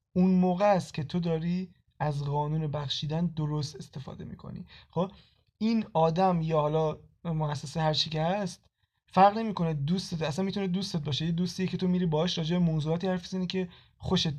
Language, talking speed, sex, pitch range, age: Persian, 165 wpm, male, 150-185 Hz, 20-39